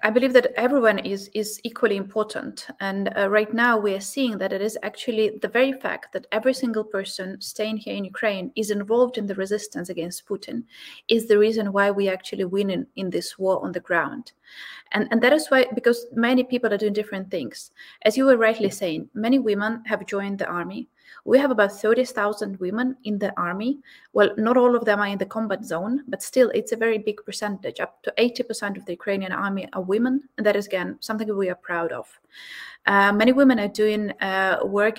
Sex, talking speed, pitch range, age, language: female, 215 wpm, 195-235 Hz, 30-49, English